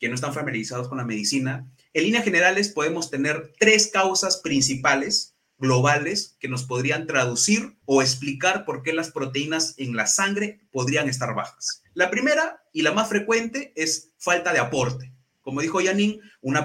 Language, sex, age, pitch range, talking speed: Spanish, male, 30-49, 140-205 Hz, 165 wpm